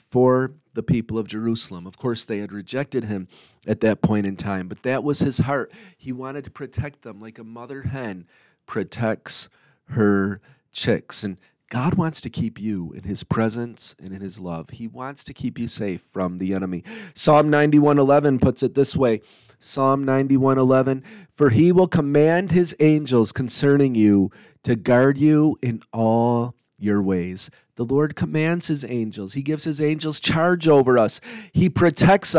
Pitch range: 110-155 Hz